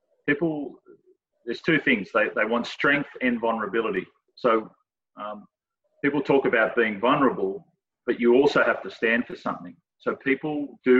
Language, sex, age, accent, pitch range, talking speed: English, male, 40-59, Australian, 110-160 Hz, 155 wpm